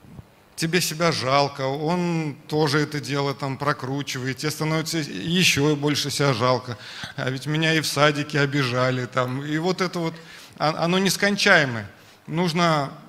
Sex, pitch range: male, 130-165 Hz